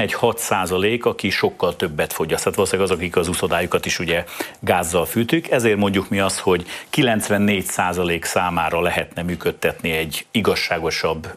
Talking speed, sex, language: 145 wpm, male, Hungarian